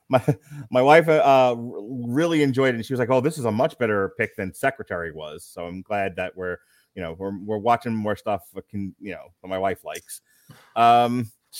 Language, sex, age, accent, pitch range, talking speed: English, male, 30-49, American, 105-130 Hz, 230 wpm